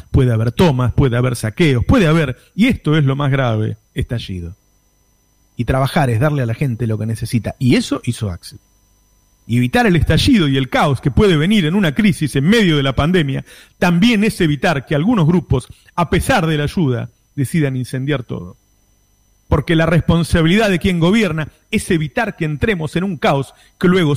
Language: Spanish